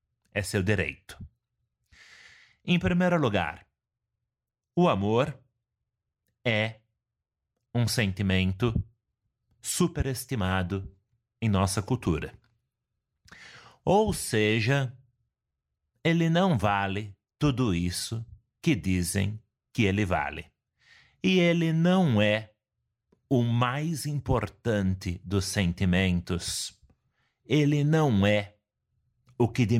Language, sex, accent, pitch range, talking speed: Portuguese, male, Brazilian, 100-130 Hz, 85 wpm